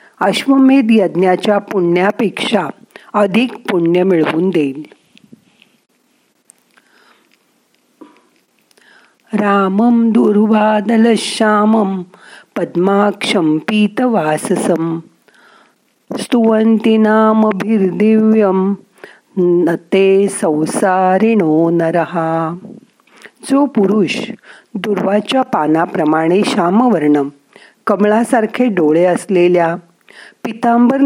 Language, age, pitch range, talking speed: Marathi, 50-69, 180-225 Hz, 40 wpm